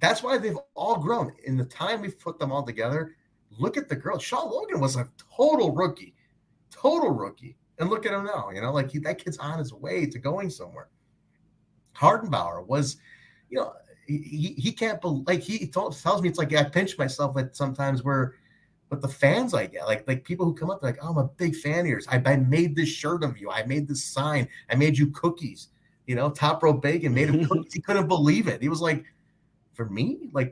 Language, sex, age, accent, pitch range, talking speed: English, male, 30-49, American, 125-165 Hz, 230 wpm